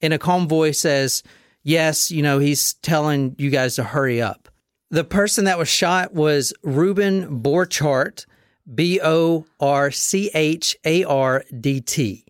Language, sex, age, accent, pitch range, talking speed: English, male, 40-59, American, 135-180 Hz, 115 wpm